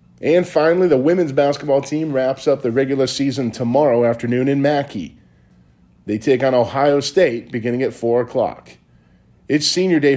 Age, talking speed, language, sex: 40-59, 160 wpm, English, male